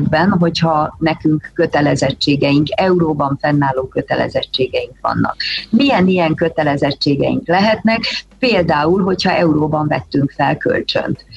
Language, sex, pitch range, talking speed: Hungarian, female, 155-185 Hz, 85 wpm